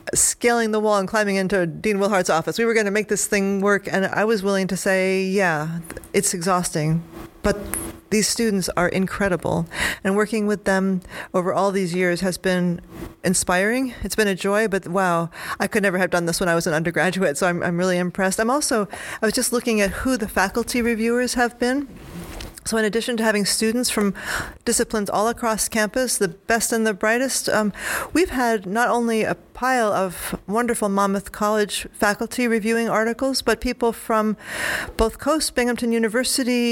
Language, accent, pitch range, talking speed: English, American, 190-230 Hz, 185 wpm